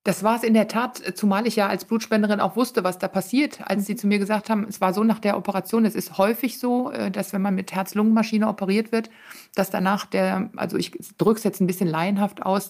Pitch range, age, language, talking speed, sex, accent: 190-220 Hz, 60-79, German, 245 wpm, female, German